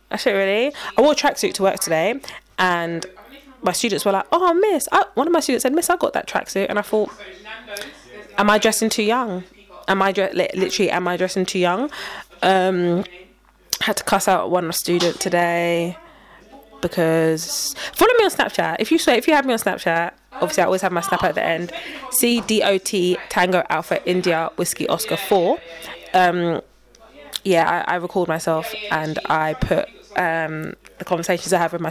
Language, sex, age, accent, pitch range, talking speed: English, female, 20-39, British, 175-230 Hz, 190 wpm